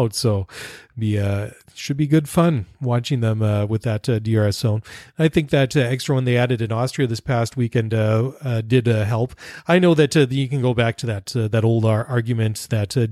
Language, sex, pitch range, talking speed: English, male, 110-130 Hz, 230 wpm